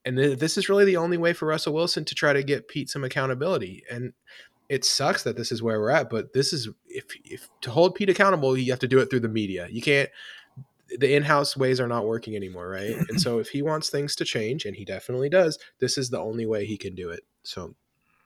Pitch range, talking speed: 105-135 Hz, 255 wpm